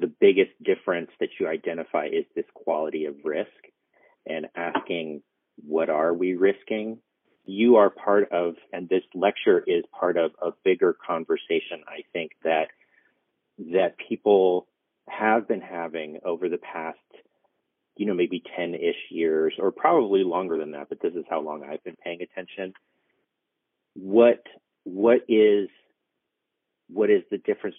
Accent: American